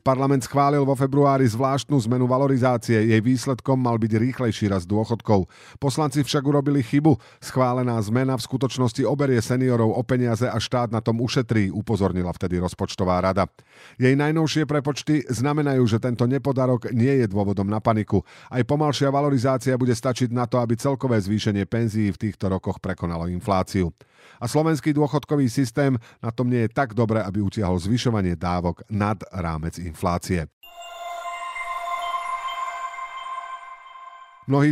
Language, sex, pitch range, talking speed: Slovak, male, 110-140 Hz, 140 wpm